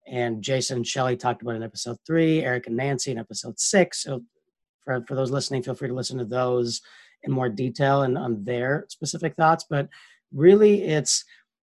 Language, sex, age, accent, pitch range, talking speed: English, male, 30-49, American, 130-165 Hz, 195 wpm